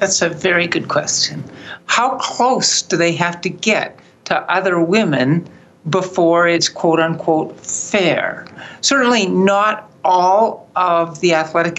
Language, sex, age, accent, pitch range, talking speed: English, male, 60-79, American, 155-190 Hz, 130 wpm